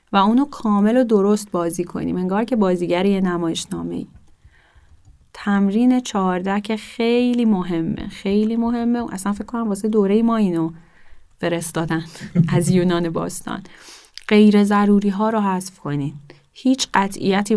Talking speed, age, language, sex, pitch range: 135 wpm, 10-29, Persian, female, 175-210 Hz